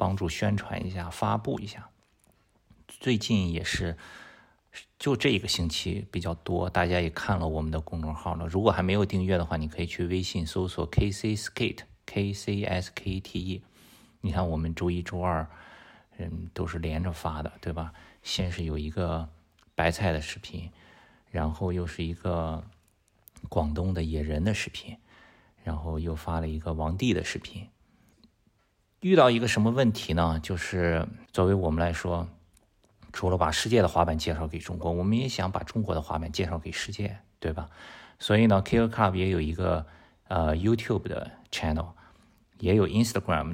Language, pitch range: Chinese, 85-100 Hz